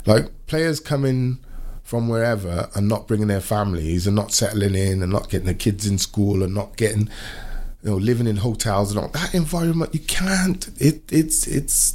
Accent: British